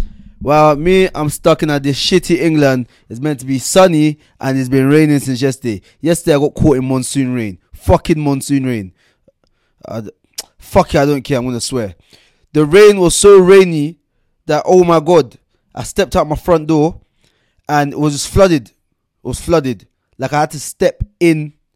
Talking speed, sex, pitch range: 190 wpm, male, 115-150 Hz